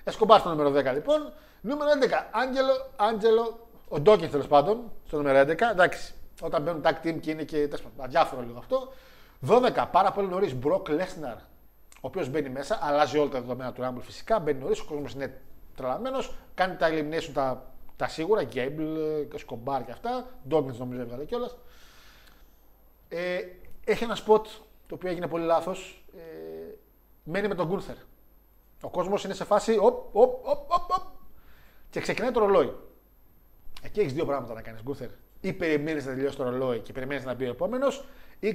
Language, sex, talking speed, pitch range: Greek, male, 165 wpm, 145-215 Hz